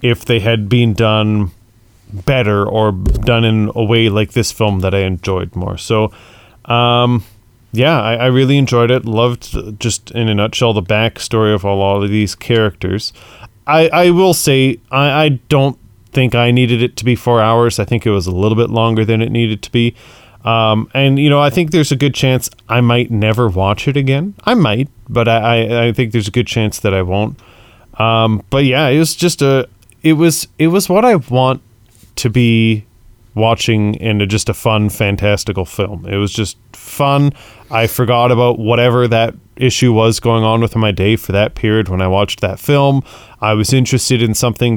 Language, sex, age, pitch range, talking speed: English, male, 30-49, 105-125 Hz, 200 wpm